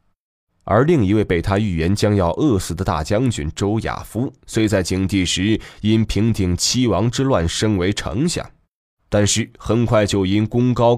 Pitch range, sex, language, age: 90-115 Hz, male, Chinese, 20-39